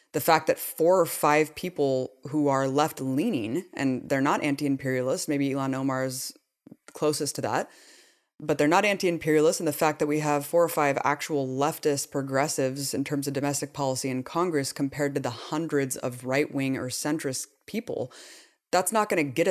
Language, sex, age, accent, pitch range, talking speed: English, female, 20-39, American, 135-160 Hz, 180 wpm